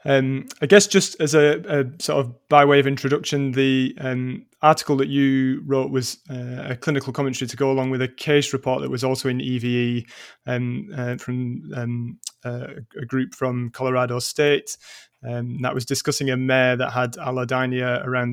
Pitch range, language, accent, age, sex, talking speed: 125-140 Hz, English, British, 20-39, male, 185 wpm